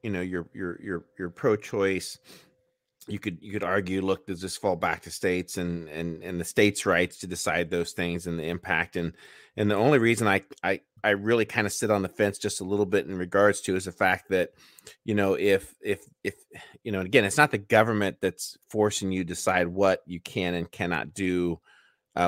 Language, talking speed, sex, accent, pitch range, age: English, 215 wpm, male, American, 90-105 Hz, 30-49